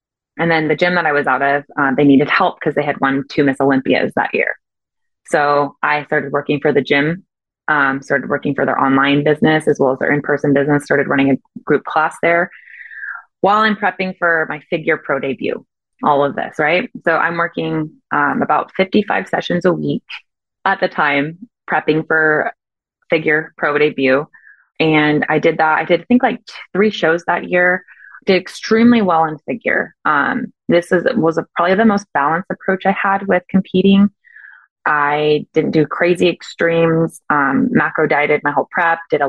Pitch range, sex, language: 145-180 Hz, female, English